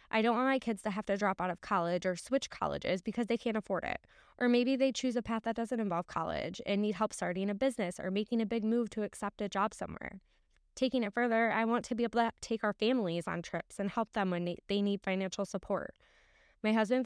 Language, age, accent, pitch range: English, 10-29, American, 175-220 Hz